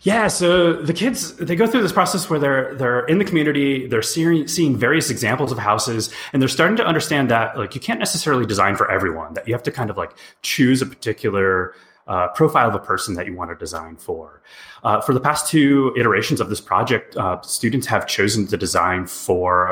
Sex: male